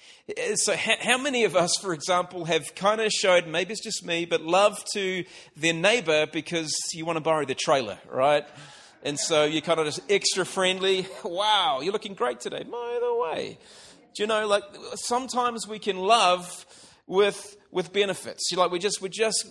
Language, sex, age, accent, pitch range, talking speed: English, male, 40-59, Australian, 145-190 Hz, 190 wpm